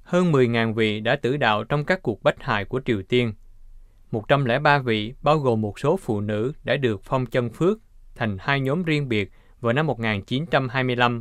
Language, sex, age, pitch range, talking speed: Vietnamese, male, 20-39, 105-140 Hz, 185 wpm